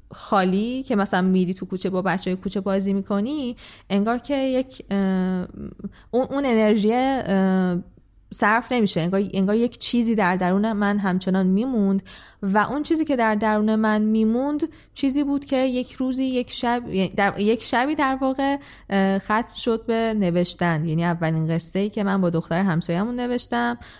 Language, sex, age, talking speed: Persian, female, 20-39, 160 wpm